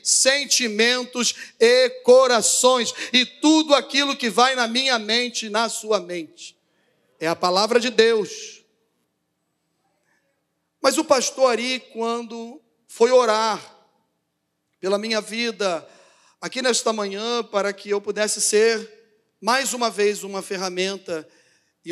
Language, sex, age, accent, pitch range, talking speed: Portuguese, male, 40-59, Brazilian, 175-230 Hz, 120 wpm